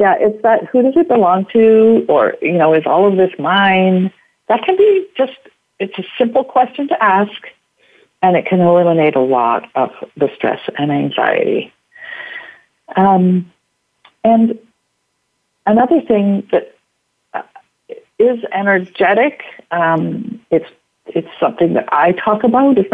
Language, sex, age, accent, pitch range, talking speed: English, female, 50-69, American, 185-265 Hz, 140 wpm